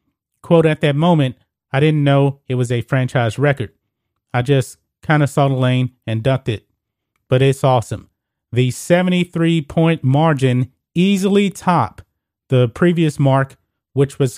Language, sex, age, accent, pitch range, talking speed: English, male, 30-49, American, 115-150 Hz, 150 wpm